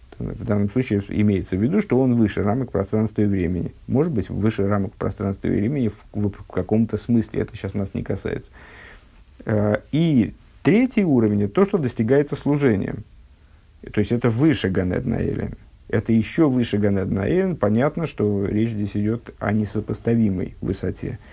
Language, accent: Russian, native